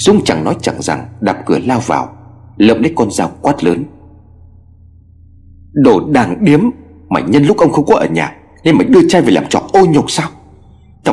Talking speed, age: 200 wpm, 30-49